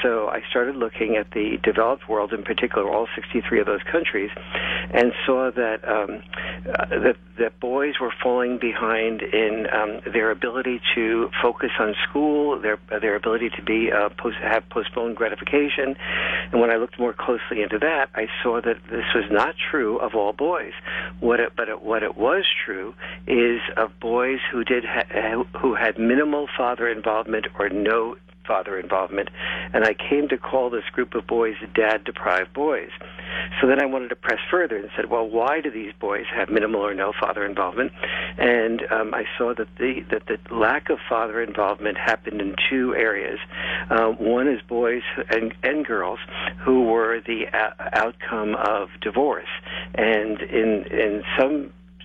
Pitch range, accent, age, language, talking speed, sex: 110-125 Hz, American, 50-69, English, 170 wpm, male